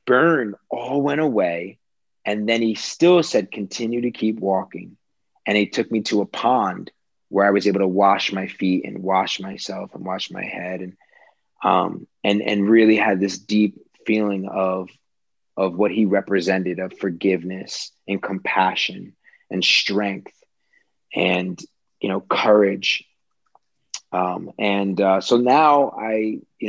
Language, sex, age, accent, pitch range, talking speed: English, male, 30-49, American, 95-115 Hz, 150 wpm